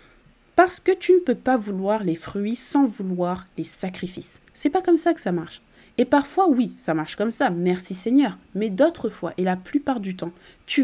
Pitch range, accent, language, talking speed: 180-260 Hz, French, French, 210 wpm